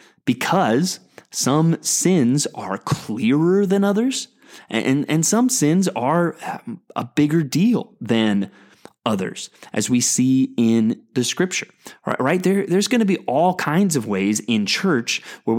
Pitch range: 125-170 Hz